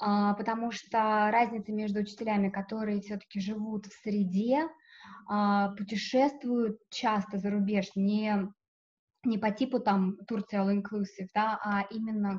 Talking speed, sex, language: 110 wpm, female, Russian